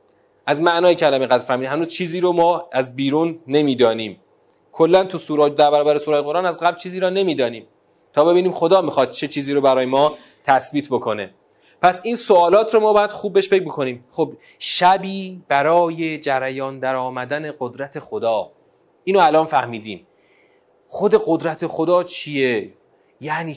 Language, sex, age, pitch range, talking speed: Persian, male, 30-49, 135-175 Hz, 145 wpm